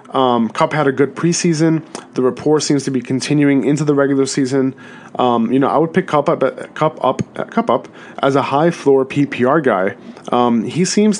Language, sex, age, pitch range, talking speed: English, male, 20-39, 125-150 Hz, 200 wpm